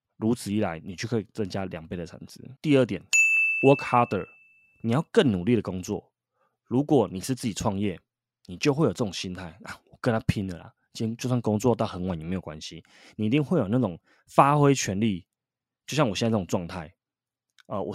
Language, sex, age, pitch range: Chinese, male, 20-39, 95-125 Hz